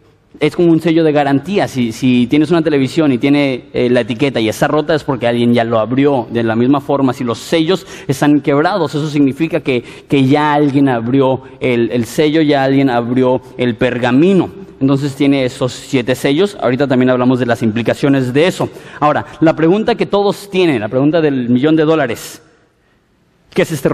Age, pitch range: 30-49, 135-170 Hz